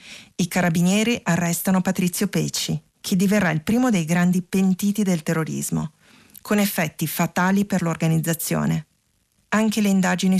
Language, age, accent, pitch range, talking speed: Italian, 40-59, native, 165-210 Hz, 125 wpm